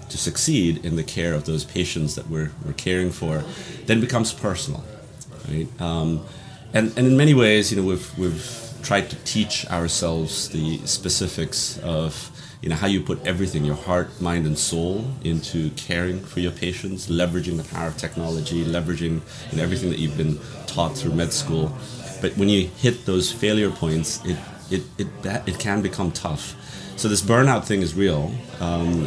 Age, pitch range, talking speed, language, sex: 30-49, 80-100 Hz, 180 wpm, English, male